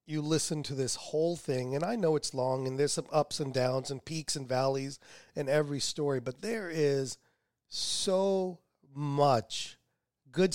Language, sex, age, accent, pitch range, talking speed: English, male, 40-59, American, 145-175 Hz, 170 wpm